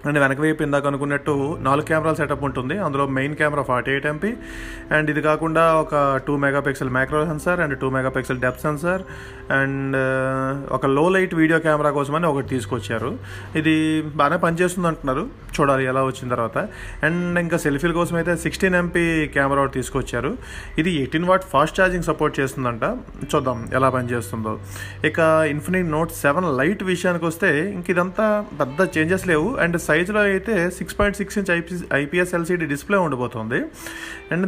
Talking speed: 155 wpm